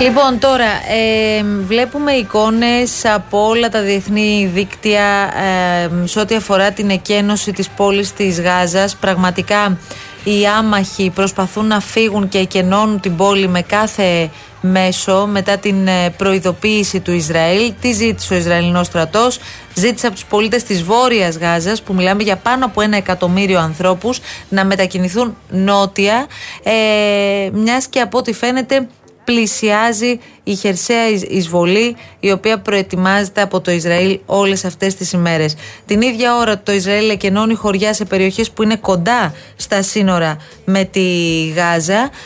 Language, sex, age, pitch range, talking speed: Greek, female, 30-49, 190-225 Hz, 140 wpm